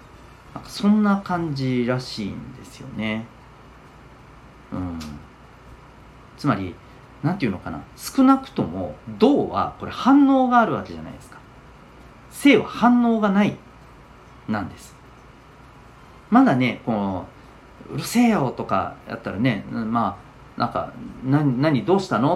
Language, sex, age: Japanese, male, 40-59